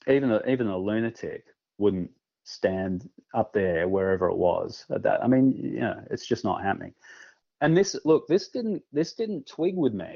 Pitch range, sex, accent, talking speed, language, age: 105-140 Hz, male, Australian, 190 wpm, English, 30-49